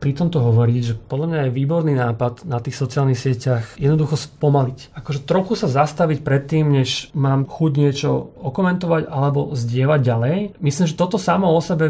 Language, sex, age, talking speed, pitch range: Slovak, male, 30-49, 170 wpm, 135-160 Hz